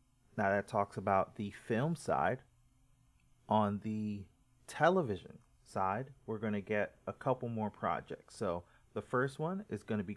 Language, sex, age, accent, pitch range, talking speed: English, male, 30-49, American, 105-125 Hz, 160 wpm